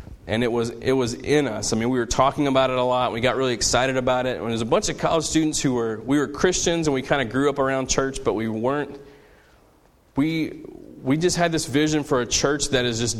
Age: 30-49